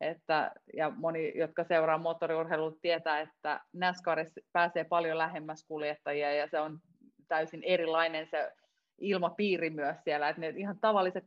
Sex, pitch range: female, 155-170 Hz